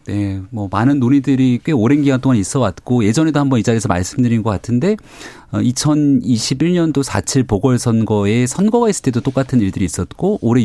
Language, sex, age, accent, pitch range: Korean, male, 40-59, native, 110-145 Hz